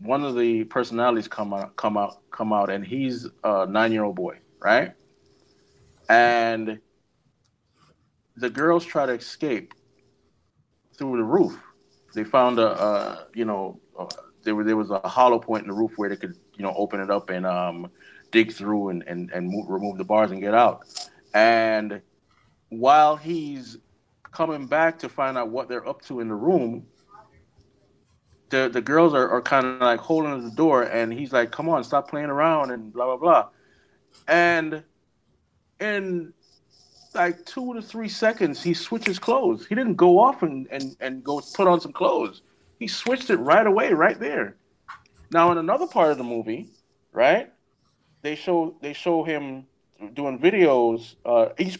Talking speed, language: 160 wpm, English